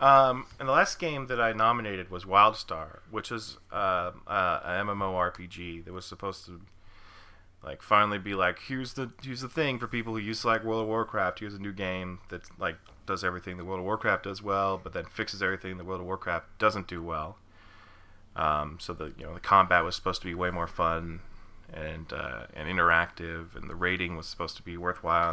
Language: English